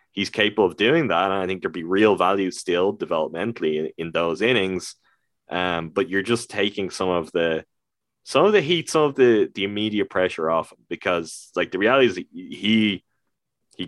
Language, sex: English, male